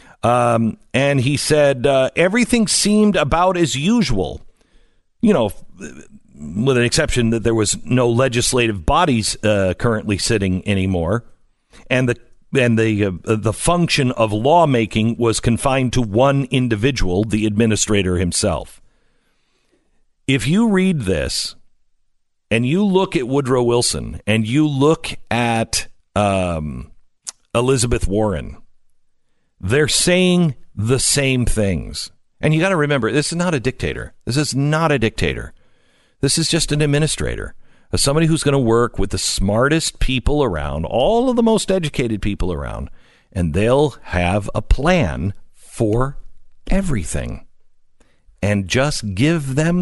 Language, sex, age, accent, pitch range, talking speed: English, male, 50-69, American, 105-145 Hz, 135 wpm